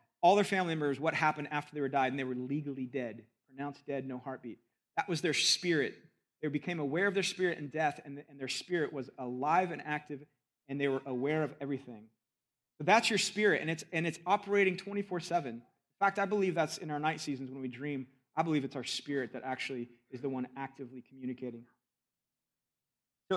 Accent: American